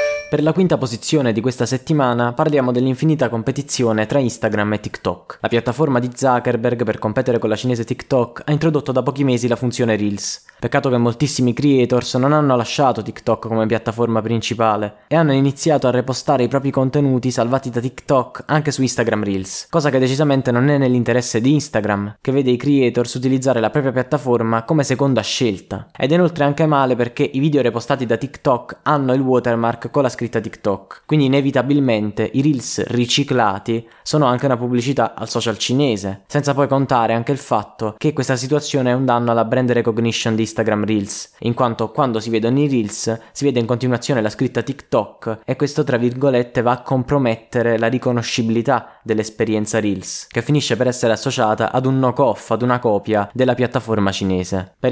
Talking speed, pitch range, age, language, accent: 180 wpm, 115-140 Hz, 20-39, Italian, native